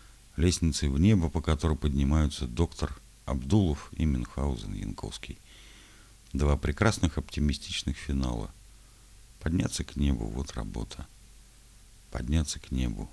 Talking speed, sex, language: 110 wpm, male, Russian